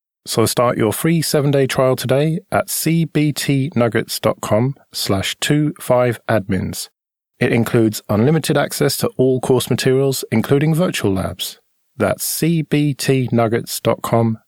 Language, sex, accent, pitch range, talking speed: English, male, British, 110-145 Hz, 95 wpm